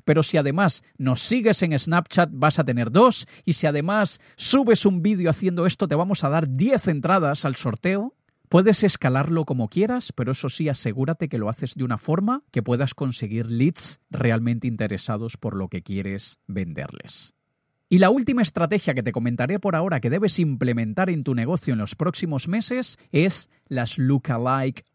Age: 40-59